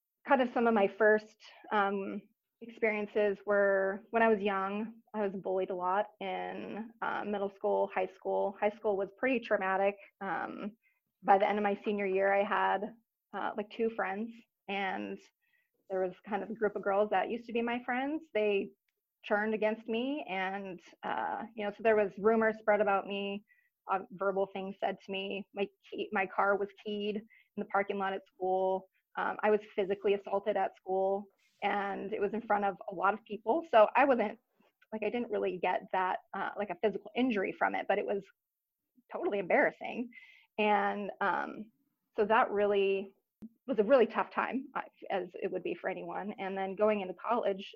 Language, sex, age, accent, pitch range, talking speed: English, female, 20-39, American, 195-225 Hz, 185 wpm